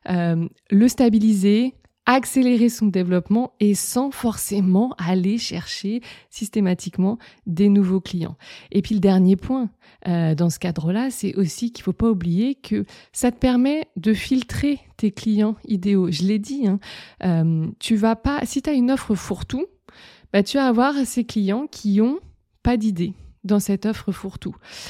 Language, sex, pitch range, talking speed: French, female, 185-230 Hz, 165 wpm